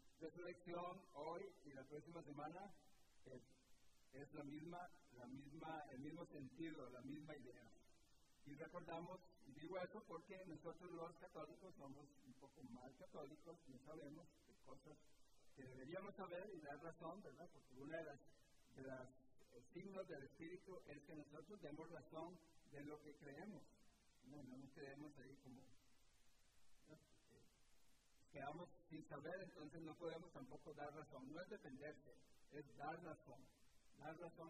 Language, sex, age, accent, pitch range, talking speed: English, male, 50-69, Mexican, 135-170 Hz, 145 wpm